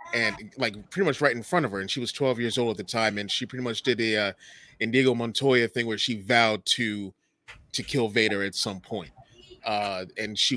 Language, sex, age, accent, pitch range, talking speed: English, male, 30-49, American, 105-125 Hz, 235 wpm